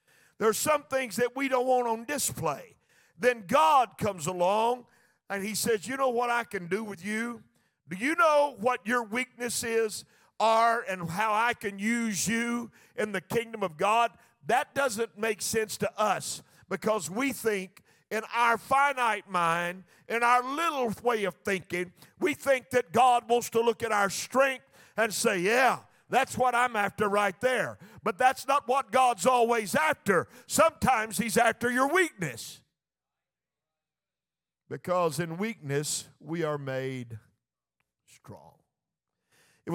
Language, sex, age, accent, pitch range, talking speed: English, male, 50-69, American, 165-240 Hz, 150 wpm